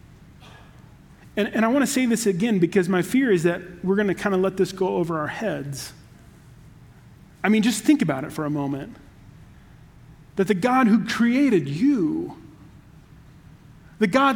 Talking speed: 170 wpm